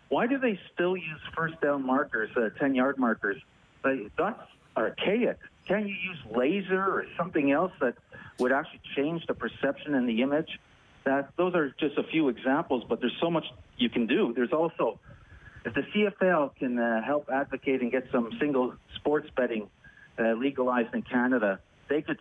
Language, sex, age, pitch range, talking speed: English, male, 40-59, 125-160 Hz, 175 wpm